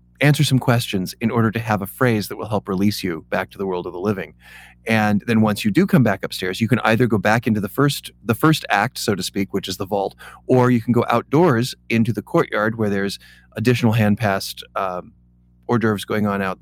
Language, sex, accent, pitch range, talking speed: English, male, American, 95-120 Hz, 235 wpm